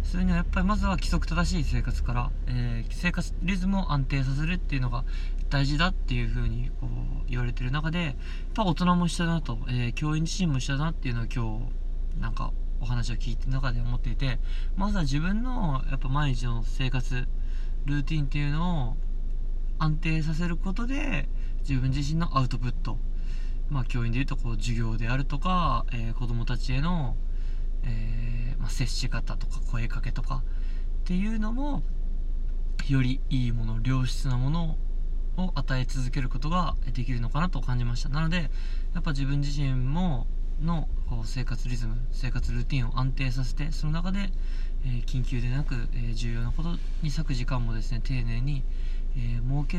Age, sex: 20-39, male